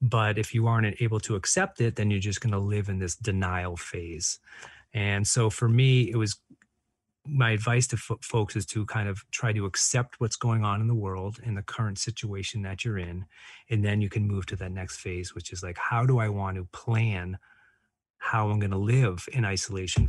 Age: 30-49